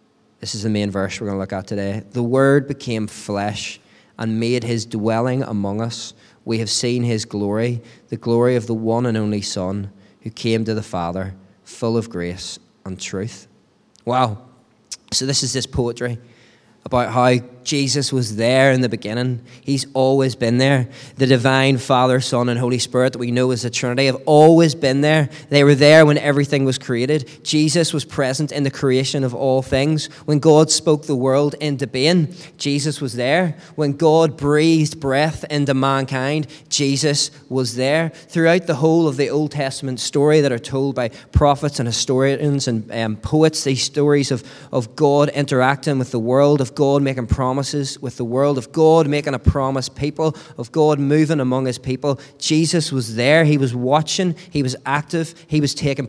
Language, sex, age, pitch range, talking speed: English, male, 20-39, 120-150 Hz, 185 wpm